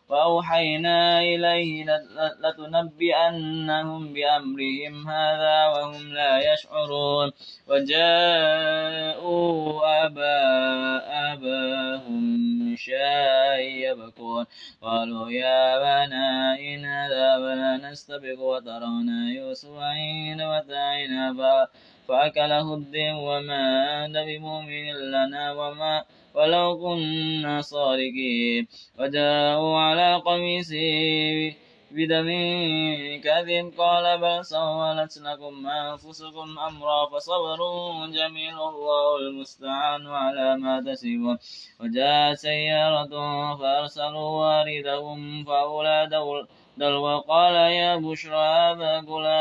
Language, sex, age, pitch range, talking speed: Indonesian, male, 20-39, 145-160 Hz, 70 wpm